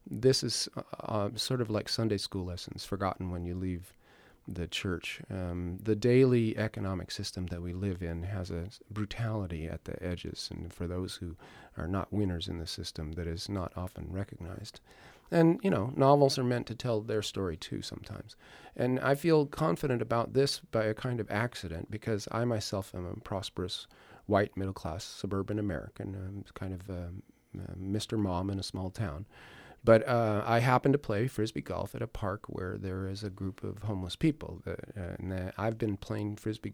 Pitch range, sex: 90-115 Hz, male